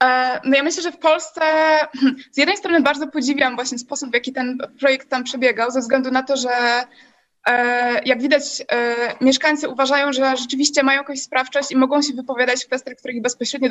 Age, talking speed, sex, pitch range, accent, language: 20-39, 175 wpm, female, 255-290 Hz, native, Polish